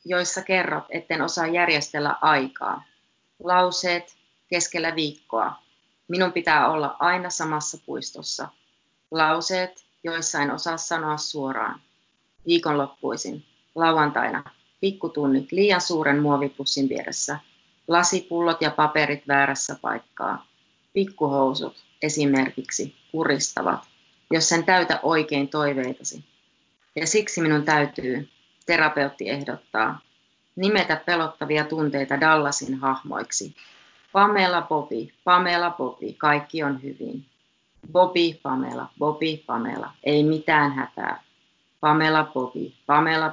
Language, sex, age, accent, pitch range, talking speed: Finnish, female, 30-49, native, 140-170 Hz, 95 wpm